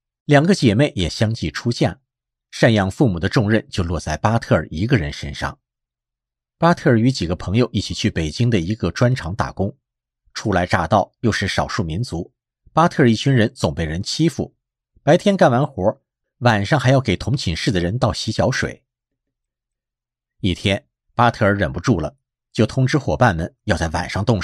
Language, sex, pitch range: Chinese, male, 90-130 Hz